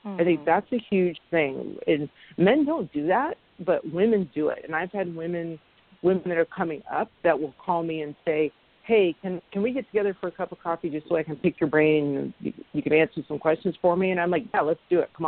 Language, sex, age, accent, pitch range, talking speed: English, female, 40-59, American, 150-180 Hz, 250 wpm